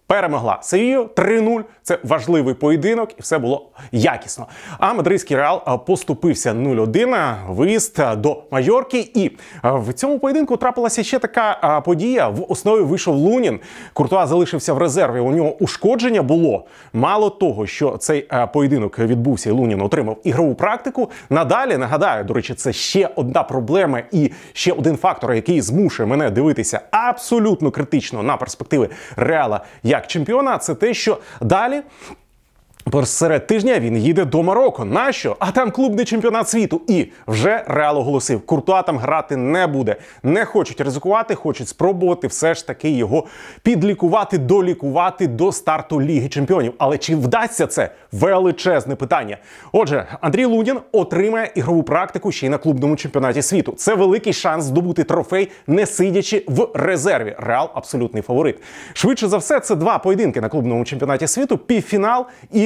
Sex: male